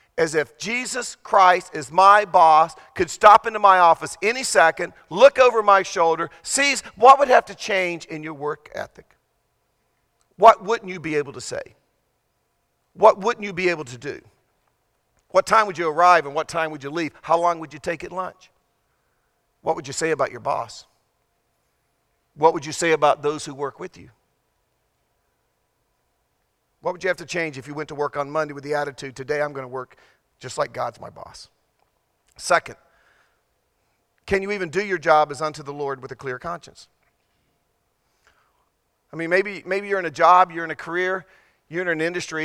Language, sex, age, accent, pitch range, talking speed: English, male, 50-69, American, 150-185 Hz, 190 wpm